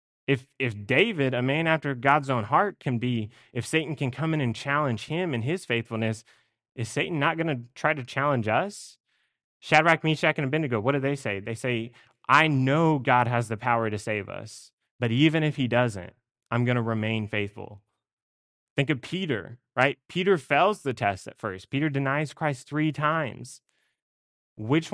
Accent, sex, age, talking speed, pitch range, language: American, male, 20-39, 185 wpm, 115-145 Hz, English